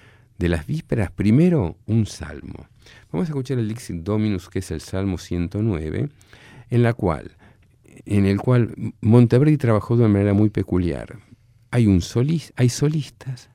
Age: 50-69